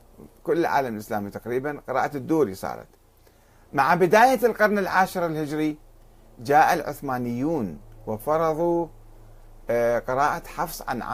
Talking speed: 95 wpm